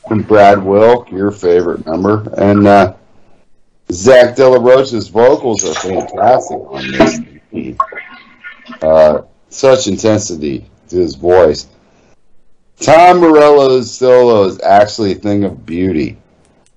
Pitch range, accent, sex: 95-125 Hz, American, male